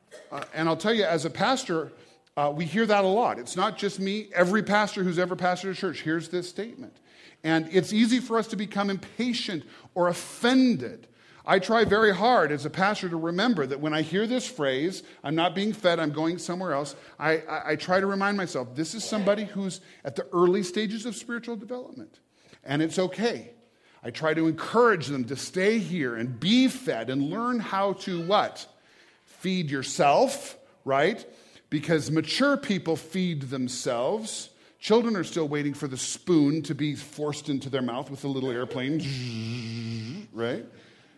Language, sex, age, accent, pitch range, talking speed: English, male, 40-59, American, 145-205 Hz, 180 wpm